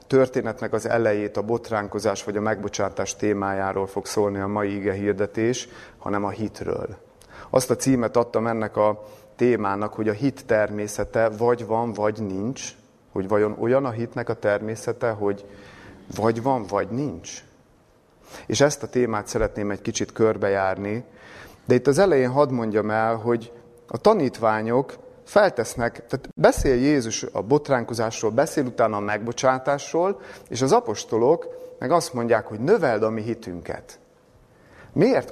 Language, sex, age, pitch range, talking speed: Hungarian, male, 30-49, 105-130 Hz, 145 wpm